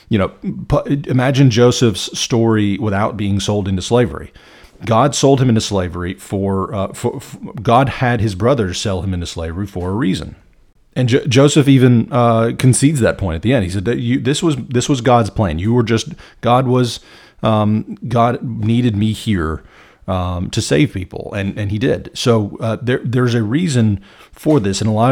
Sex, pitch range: male, 100-125 Hz